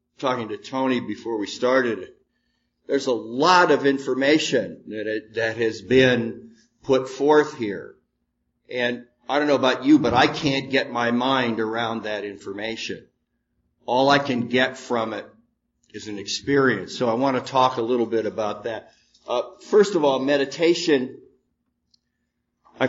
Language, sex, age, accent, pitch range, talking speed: English, male, 50-69, American, 115-140 Hz, 155 wpm